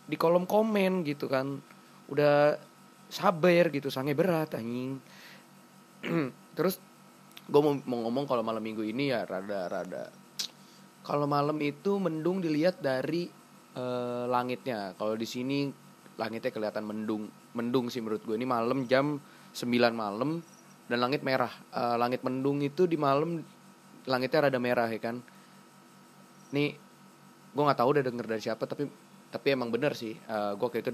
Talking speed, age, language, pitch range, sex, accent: 145 wpm, 20-39, Indonesian, 115-145 Hz, male, native